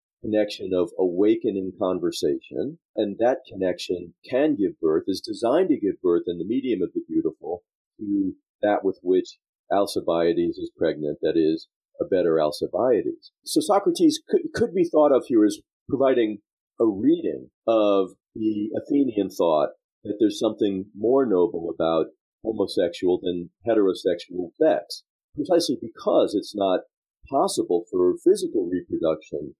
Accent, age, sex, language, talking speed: American, 50-69, male, English, 140 wpm